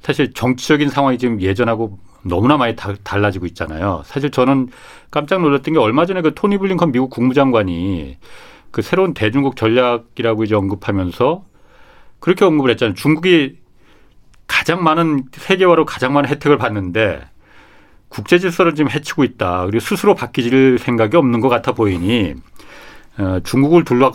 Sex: male